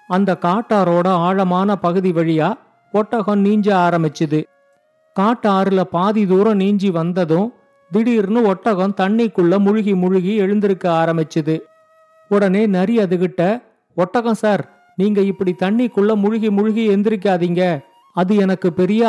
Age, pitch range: 50-69, 180-215 Hz